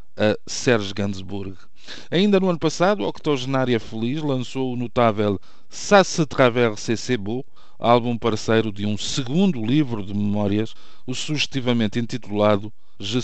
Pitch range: 105-130 Hz